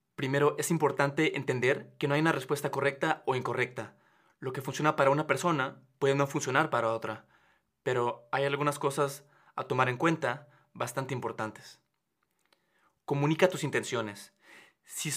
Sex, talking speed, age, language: male, 145 wpm, 20-39, Spanish